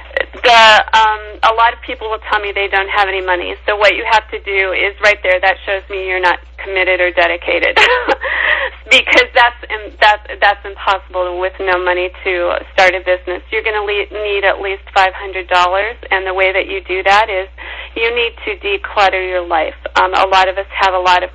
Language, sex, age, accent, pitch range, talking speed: English, female, 40-59, American, 185-210 Hz, 215 wpm